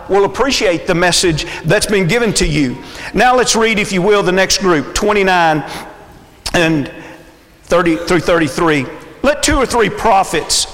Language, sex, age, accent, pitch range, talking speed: English, male, 50-69, American, 160-210 Hz, 155 wpm